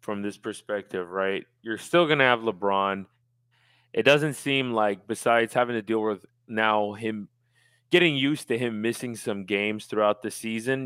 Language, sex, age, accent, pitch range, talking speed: English, male, 20-39, American, 105-125 Hz, 165 wpm